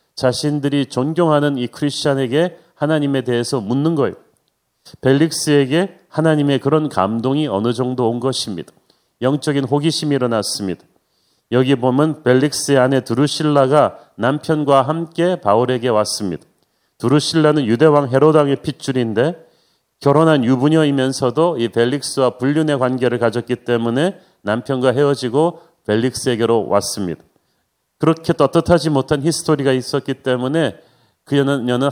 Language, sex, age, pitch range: Korean, male, 40-59, 125-155 Hz